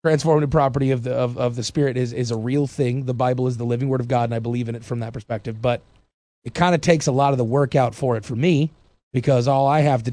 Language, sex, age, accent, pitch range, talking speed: English, male, 30-49, American, 115-140 Hz, 290 wpm